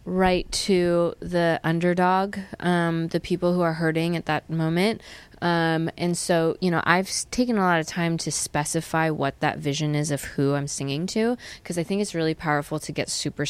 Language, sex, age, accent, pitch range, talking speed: English, female, 20-39, American, 145-170 Hz, 195 wpm